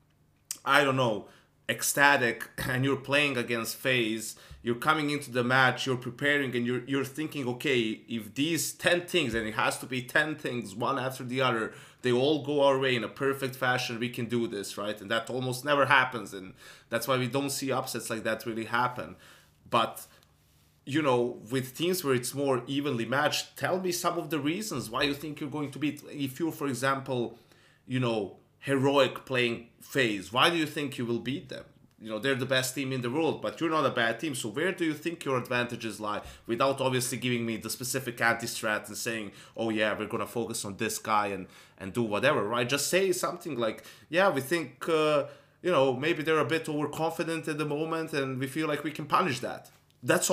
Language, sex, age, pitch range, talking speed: English, male, 30-49, 115-145 Hz, 215 wpm